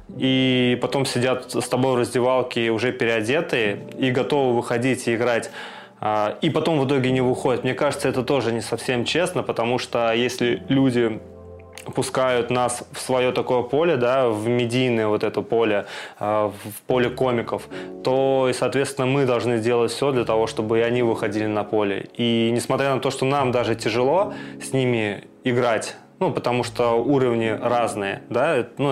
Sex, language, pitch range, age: male, Russian, 115-130 Hz, 20-39